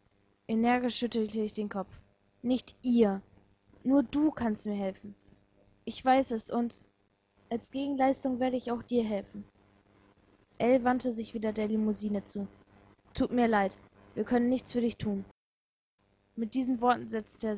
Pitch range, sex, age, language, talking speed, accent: 200-245 Hz, female, 20-39, German, 150 wpm, German